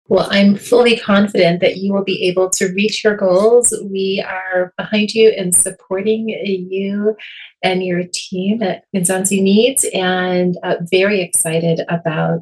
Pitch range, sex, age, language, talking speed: 170-195 Hz, female, 30-49, English, 150 wpm